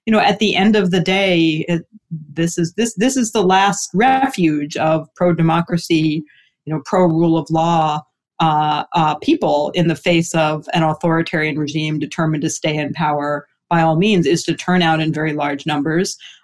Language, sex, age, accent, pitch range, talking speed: English, female, 40-59, American, 160-185 Hz, 185 wpm